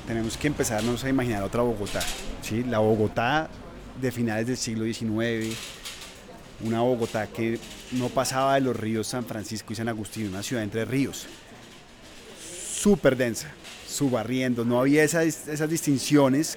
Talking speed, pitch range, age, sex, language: 145 wpm, 110-130 Hz, 30-49, male, Spanish